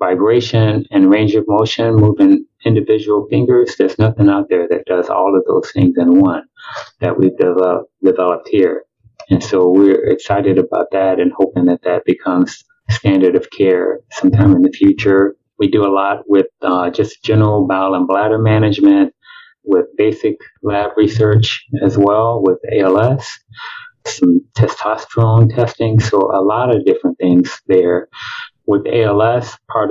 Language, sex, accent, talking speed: English, male, American, 150 wpm